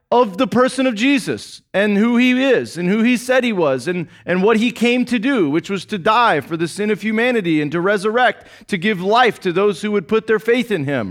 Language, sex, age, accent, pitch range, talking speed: English, male, 30-49, American, 170-250 Hz, 250 wpm